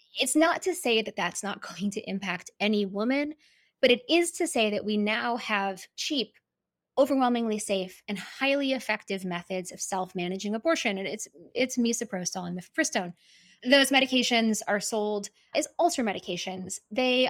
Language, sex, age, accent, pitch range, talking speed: English, female, 20-39, American, 195-255 Hz, 155 wpm